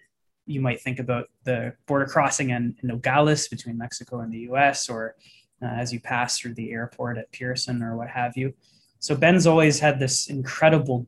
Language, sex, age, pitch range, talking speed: English, male, 20-39, 120-140 Hz, 190 wpm